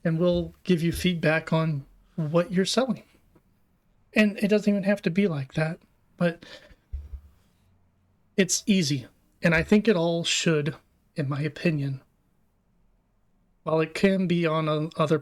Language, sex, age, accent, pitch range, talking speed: English, male, 30-49, American, 135-165 Hz, 140 wpm